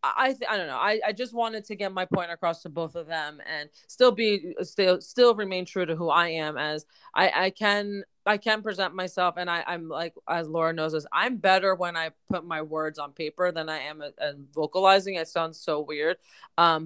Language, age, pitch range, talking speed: English, 20-39, 160-200 Hz, 230 wpm